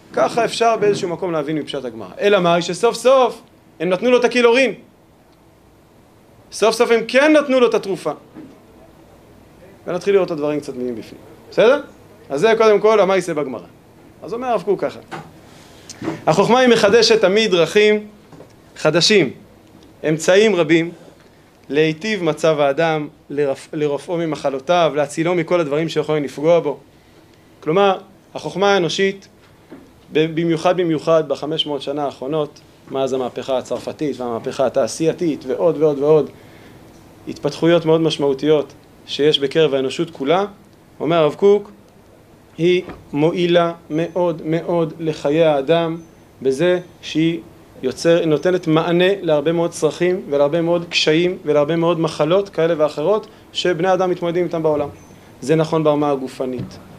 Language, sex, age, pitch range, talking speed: Hebrew, male, 30-49, 145-180 Hz, 125 wpm